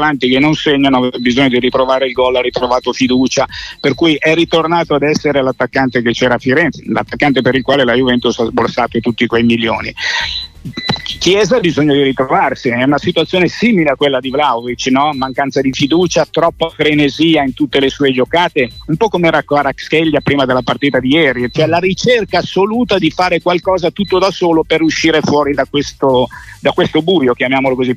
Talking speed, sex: 190 wpm, male